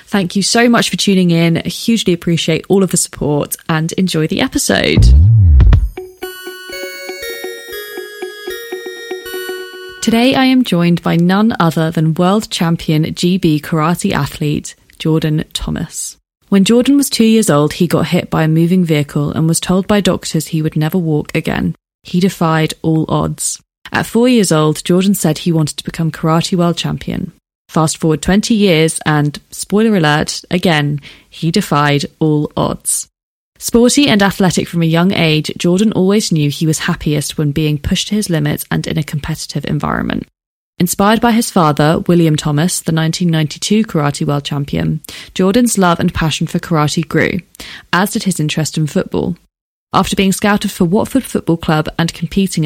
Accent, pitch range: British, 155-200 Hz